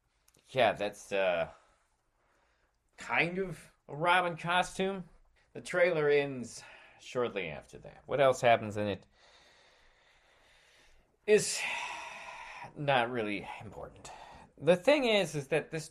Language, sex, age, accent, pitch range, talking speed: English, male, 30-49, American, 115-165 Hz, 110 wpm